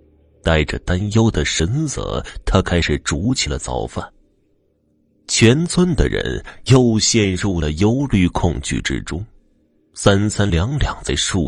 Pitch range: 80-110 Hz